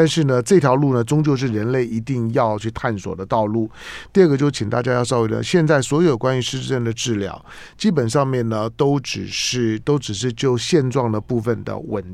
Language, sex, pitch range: Chinese, male, 110-140 Hz